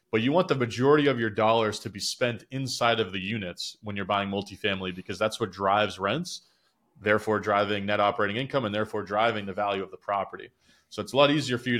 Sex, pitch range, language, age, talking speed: male, 100-120 Hz, English, 30-49, 225 wpm